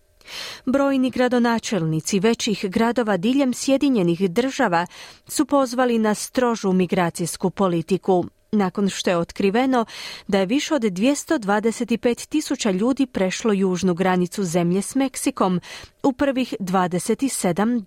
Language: Croatian